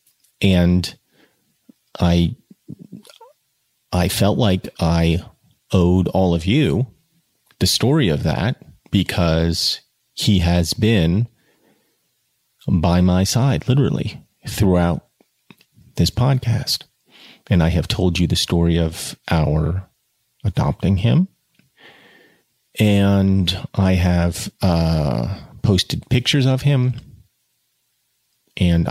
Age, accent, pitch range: 40-59, American, 85-125 Hz